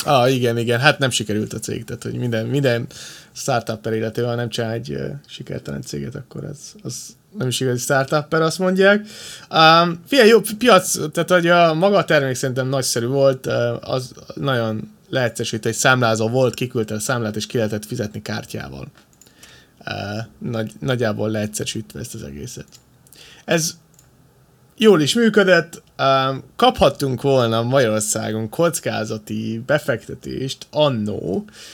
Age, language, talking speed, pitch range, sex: 20-39, Hungarian, 140 wpm, 110-140 Hz, male